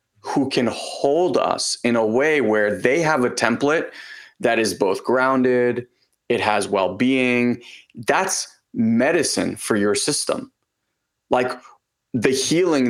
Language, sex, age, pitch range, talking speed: English, male, 30-49, 115-140 Hz, 130 wpm